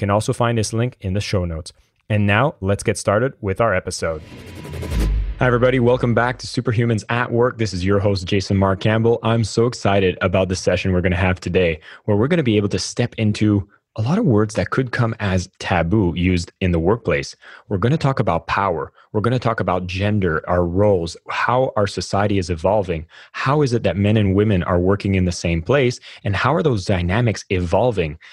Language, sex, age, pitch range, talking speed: English, male, 20-39, 95-120 Hz, 220 wpm